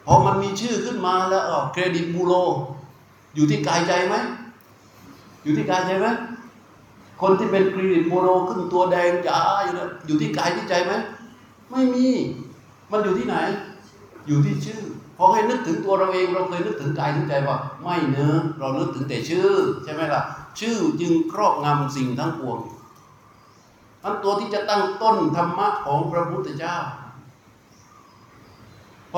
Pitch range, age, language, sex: 140-190 Hz, 60-79, Thai, male